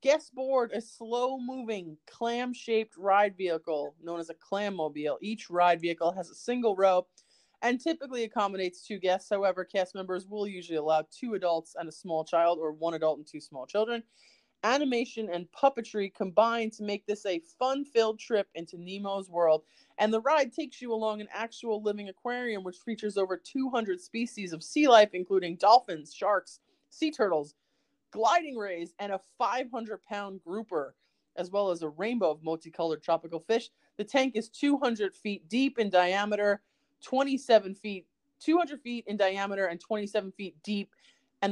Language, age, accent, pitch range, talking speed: English, 30-49, American, 175-230 Hz, 160 wpm